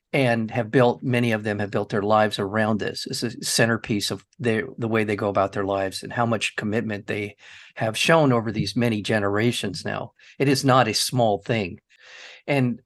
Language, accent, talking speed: English, American, 195 wpm